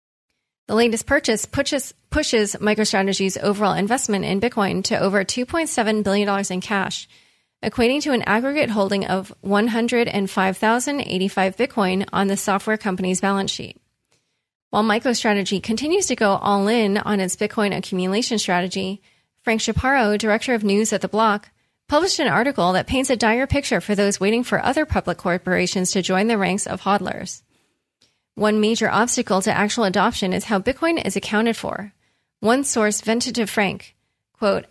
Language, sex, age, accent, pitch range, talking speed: English, female, 30-49, American, 195-235 Hz, 155 wpm